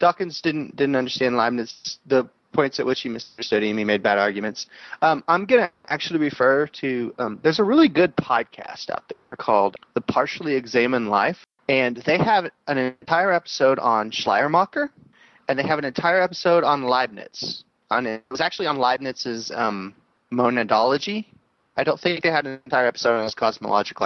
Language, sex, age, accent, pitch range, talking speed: English, male, 30-49, American, 120-155 Hz, 175 wpm